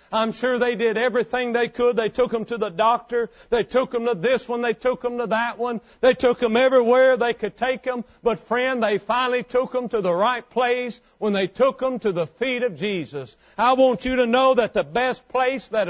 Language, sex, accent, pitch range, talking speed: English, male, American, 200-245 Hz, 235 wpm